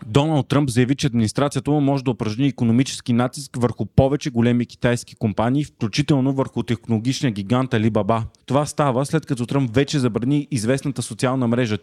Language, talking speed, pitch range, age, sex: Bulgarian, 155 wpm, 115-140 Hz, 30-49, male